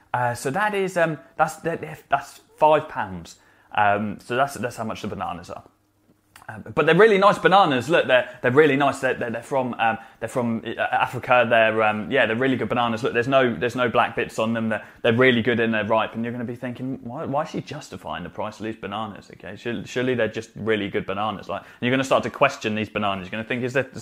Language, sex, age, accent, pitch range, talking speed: English, male, 20-39, British, 110-145 Hz, 245 wpm